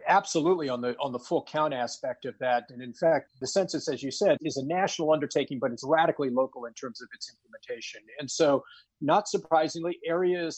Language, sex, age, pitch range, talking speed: English, male, 40-59, 135-175 Hz, 205 wpm